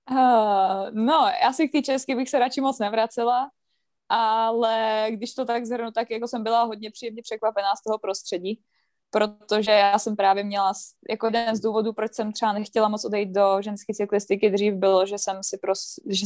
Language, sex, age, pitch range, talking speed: Czech, female, 20-39, 200-230 Hz, 190 wpm